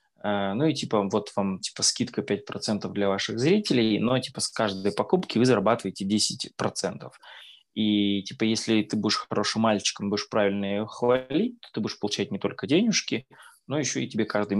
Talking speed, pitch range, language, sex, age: 175 wpm, 105-125 Hz, Russian, male, 20-39